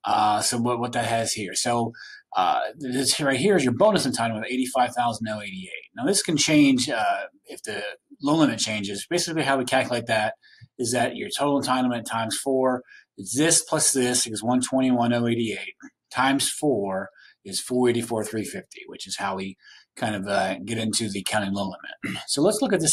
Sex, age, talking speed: male, 30-49, 175 wpm